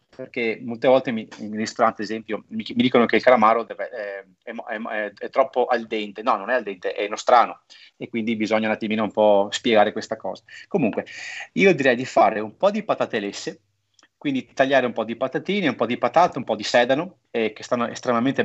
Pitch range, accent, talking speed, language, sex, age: 110-150 Hz, native, 215 wpm, Italian, male, 30-49